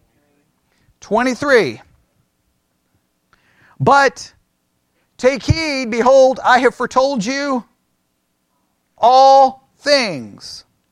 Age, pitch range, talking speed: 40-59, 210-275 Hz, 60 wpm